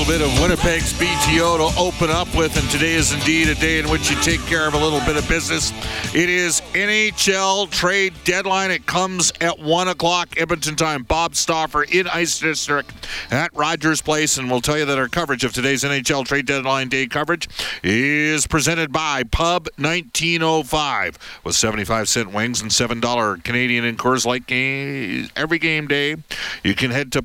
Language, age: English, 50-69